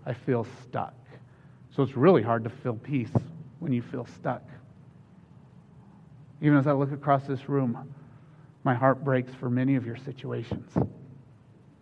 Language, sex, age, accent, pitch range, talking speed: English, male, 40-59, American, 125-150 Hz, 145 wpm